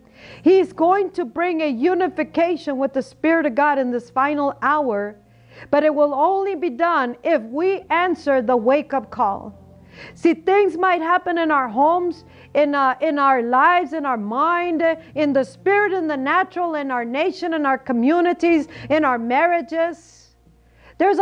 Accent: American